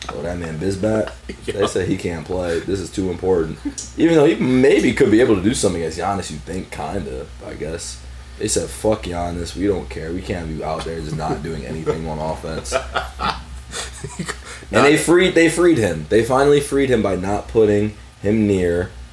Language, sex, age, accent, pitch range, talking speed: English, male, 20-39, American, 75-110 Hz, 200 wpm